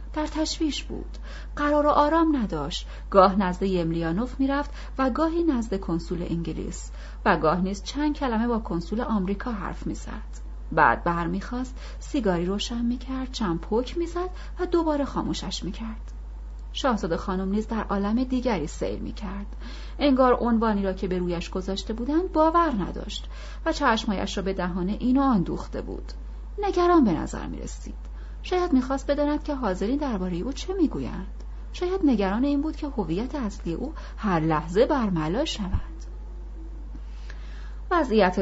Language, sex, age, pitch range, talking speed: Persian, female, 30-49, 175-275 Hz, 140 wpm